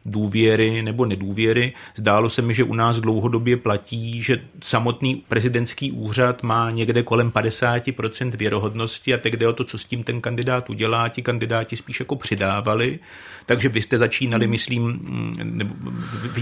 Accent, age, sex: native, 40-59, male